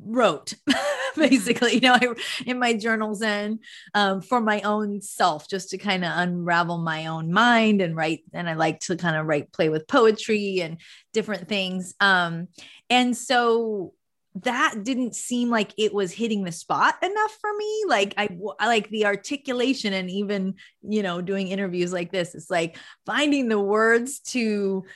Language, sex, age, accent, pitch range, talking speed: English, female, 30-49, American, 180-230 Hz, 175 wpm